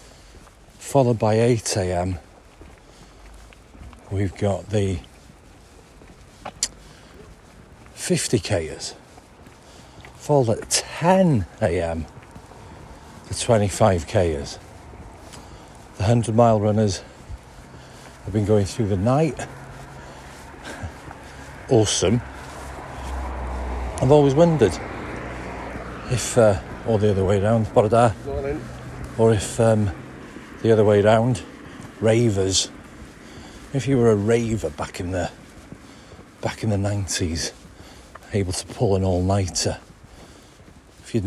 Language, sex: English, male